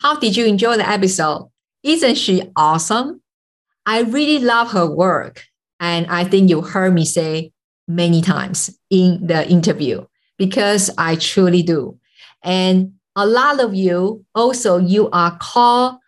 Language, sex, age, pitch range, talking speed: English, female, 50-69, 180-235 Hz, 145 wpm